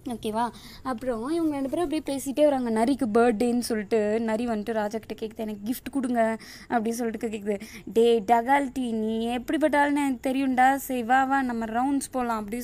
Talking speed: 155 wpm